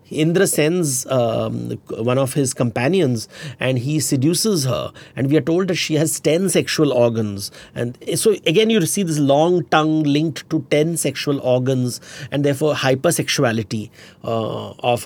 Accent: Indian